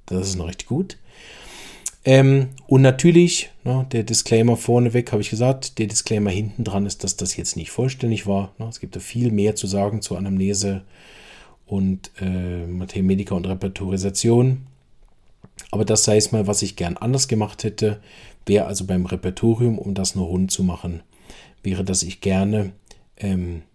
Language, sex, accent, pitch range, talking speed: German, male, German, 95-115 Hz, 170 wpm